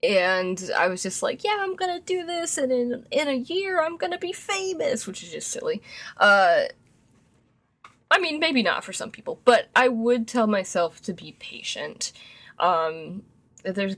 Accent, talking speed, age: American, 175 wpm, 20-39